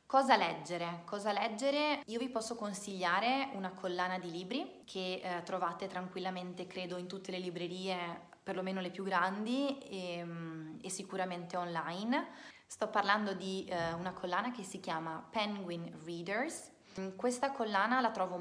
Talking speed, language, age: 145 wpm, Italian, 20-39